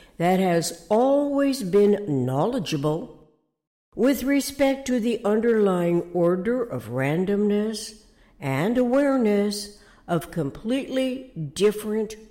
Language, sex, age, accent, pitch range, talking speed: English, female, 60-79, American, 170-230 Hz, 90 wpm